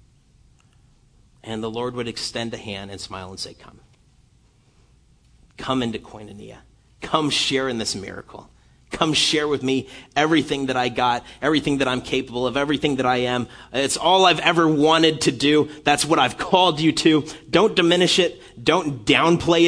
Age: 40-59